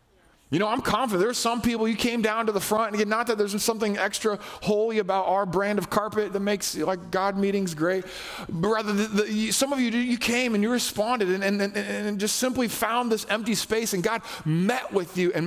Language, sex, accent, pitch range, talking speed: English, male, American, 135-220 Hz, 240 wpm